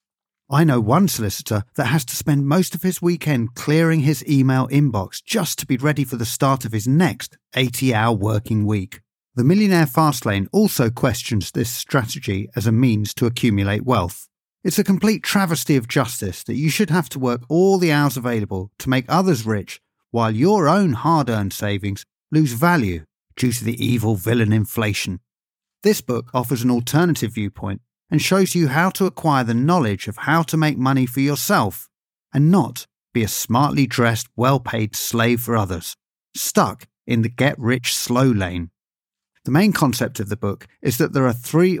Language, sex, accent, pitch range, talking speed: English, male, British, 115-155 Hz, 175 wpm